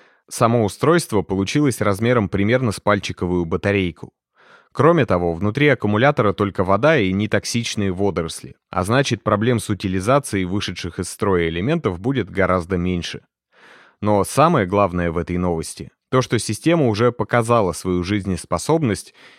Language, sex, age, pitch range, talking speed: Russian, male, 30-49, 95-120 Hz, 130 wpm